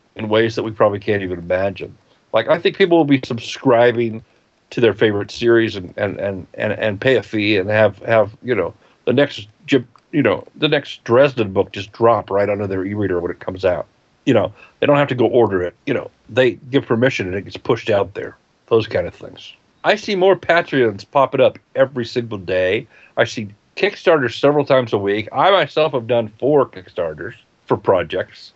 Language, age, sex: English, 50-69, male